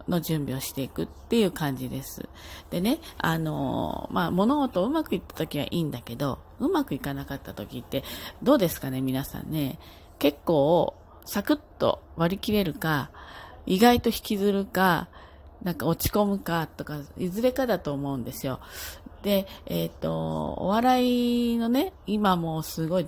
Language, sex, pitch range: Japanese, female, 140-215 Hz